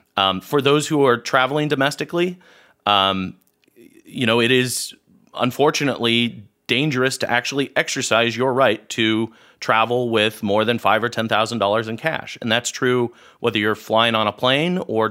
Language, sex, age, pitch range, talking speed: English, male, 30-49, 110-135 Hz, 155 wpm